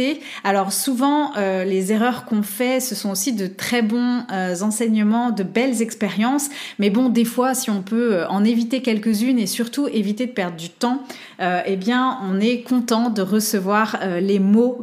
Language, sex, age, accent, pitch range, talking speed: French, female, 30-49, French, 200-260 Hz, 185 wpm